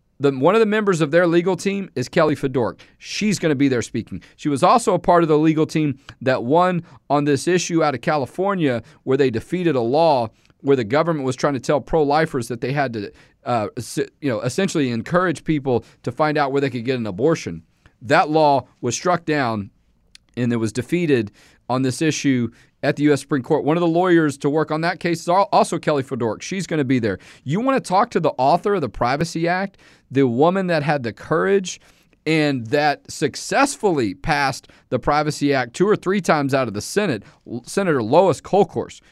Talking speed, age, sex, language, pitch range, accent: 210 wpm, 40-59, male, English, 130-175 Hz, American